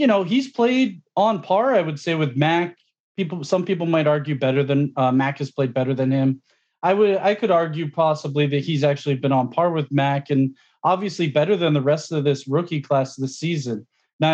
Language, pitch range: English, 140-175 Hz